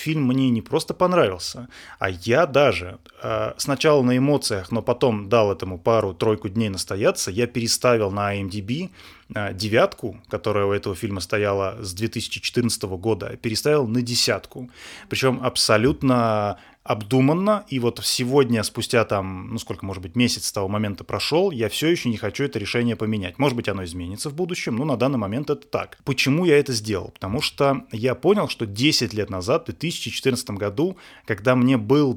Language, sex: Russian, male